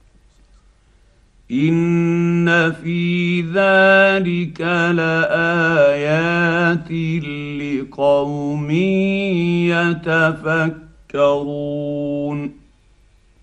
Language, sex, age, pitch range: Arabic, male, 50-69, 160-195 Hz